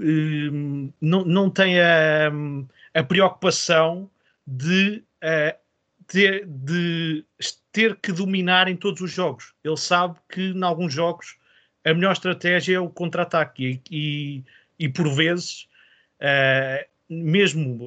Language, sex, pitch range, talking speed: Portuguese, male, 150-180 Hz, 110 wpm